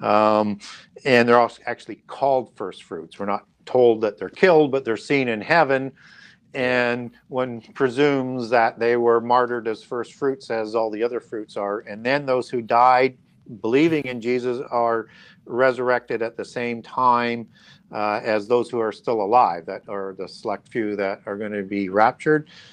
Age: 50-69